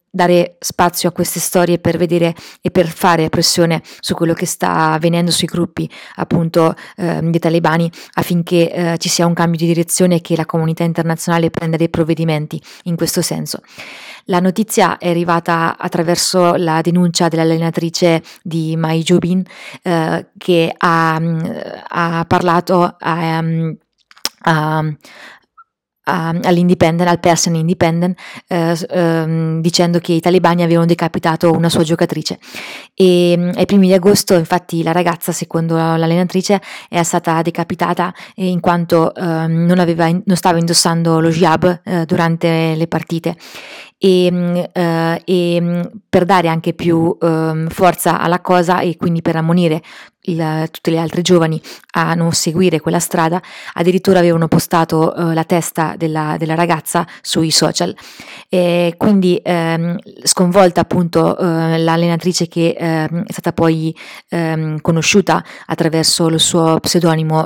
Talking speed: 140 wpm